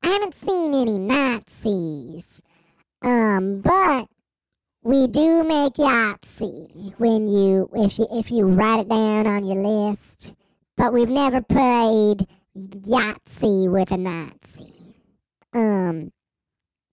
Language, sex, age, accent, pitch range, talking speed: English, male, 40-59, American, 195-270 Hz, 115 wpm